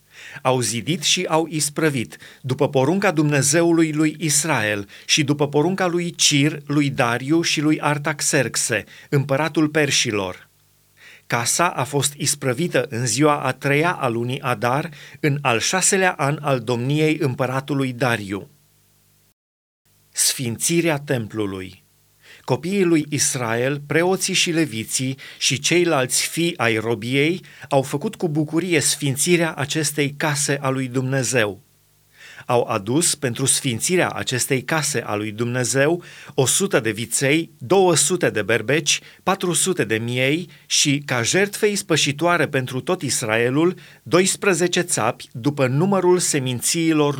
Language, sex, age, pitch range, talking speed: Romanian, male, 40-59, 130-165 Hz, 120 wpm